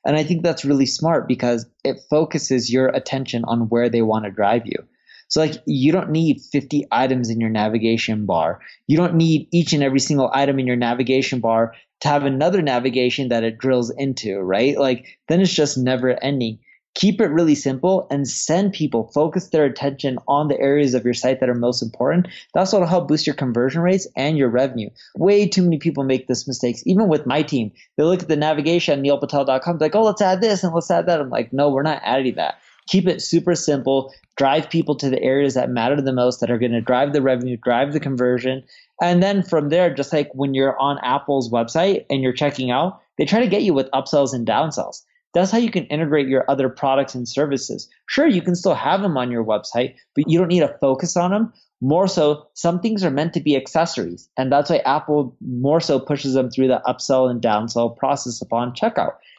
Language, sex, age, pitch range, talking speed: English, male, 20-39, 130-170 Hz, 220 wpm